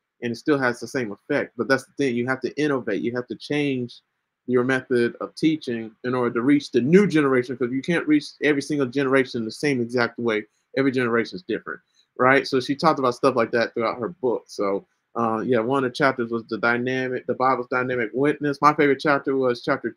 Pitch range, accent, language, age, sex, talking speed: 125-155 Hz, American, English, 30-49, male, 225 wpm